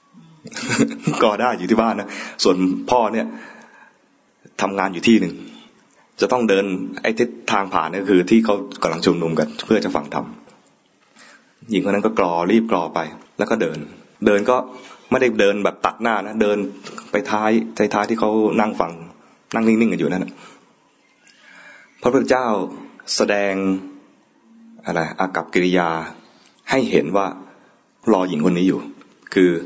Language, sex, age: English, male, 20-39